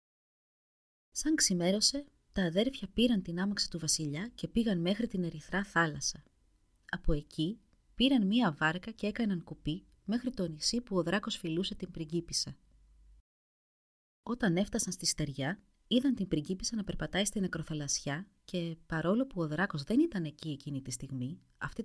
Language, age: Greek, 30-49